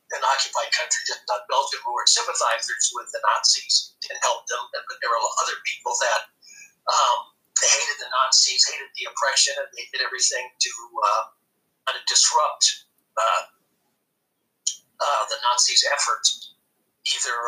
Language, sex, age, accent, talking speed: English, male, 60-79, American, 145 wpm